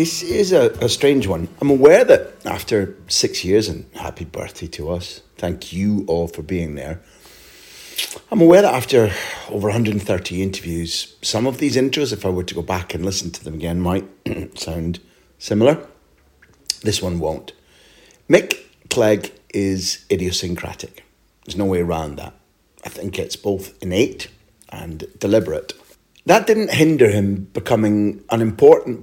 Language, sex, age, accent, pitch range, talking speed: English, male, 40-59, British, 90-130 Hz, 155 wpm